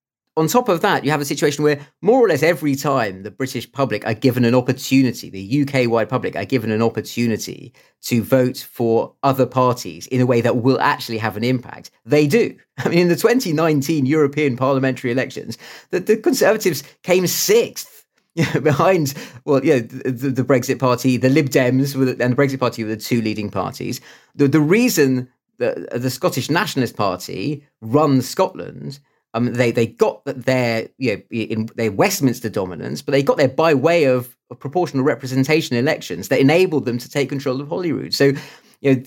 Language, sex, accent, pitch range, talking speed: English, male, British, 120-145 Hz, 185 wpm